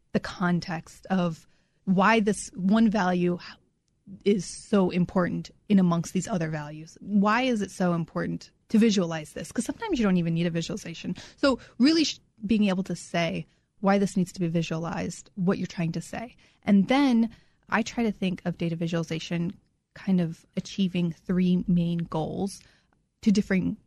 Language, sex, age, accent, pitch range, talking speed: English, female, 20-39, American, 175-200 Hz, 165 wpm